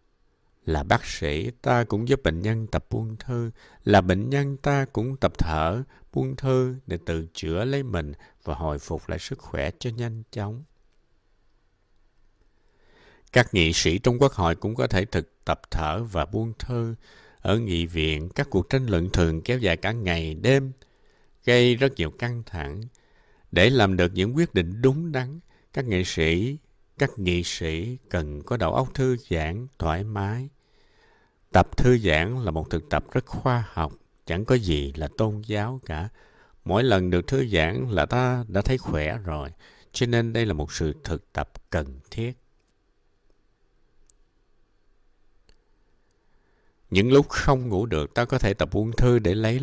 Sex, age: male, 60-79